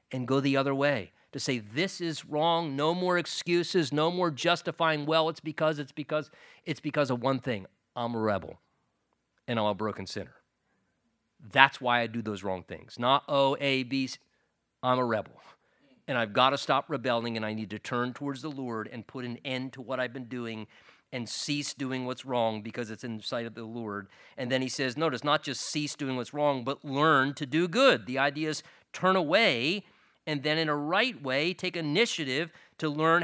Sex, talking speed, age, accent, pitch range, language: male, 210 wpm, 40-59, American, 125-165 Hz, English